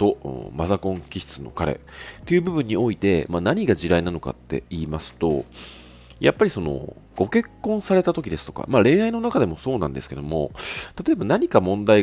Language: Japanese